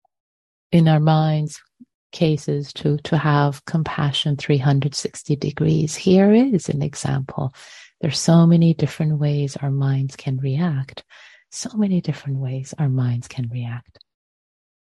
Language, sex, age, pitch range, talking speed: English, female, 30-49, 135-170 Hz, 125 wpm